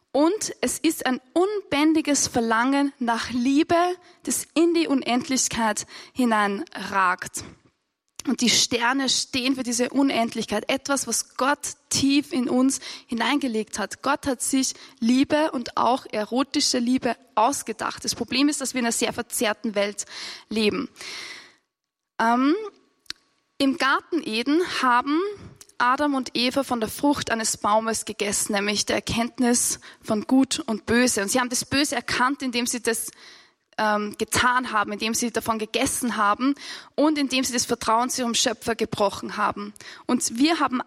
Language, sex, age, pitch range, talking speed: German, female, 20-39, 230-290 Hz, 145 wpm